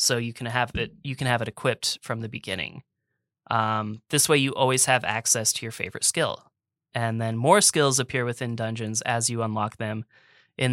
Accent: American